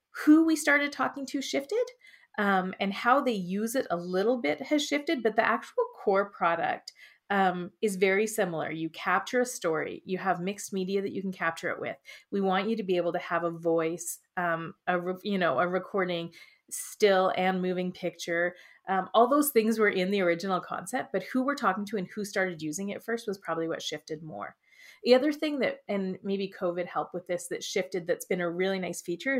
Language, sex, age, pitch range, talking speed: English, female, 30-49, 175-225 Hz, 205 wpm